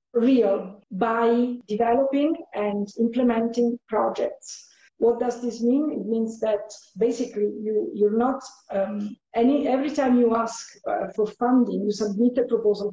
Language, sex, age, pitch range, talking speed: English, female, 50-69, 210-245 Hz, 135 wpm